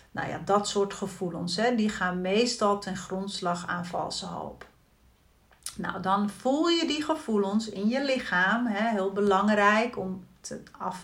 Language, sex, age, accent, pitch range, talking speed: Dutch, female, 40-59, Dutch, 190-255 Hz, 140 wpm